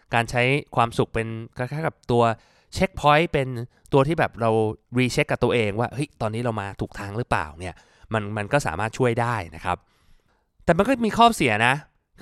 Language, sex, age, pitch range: Thai, male, 20-39, 110-145 Hz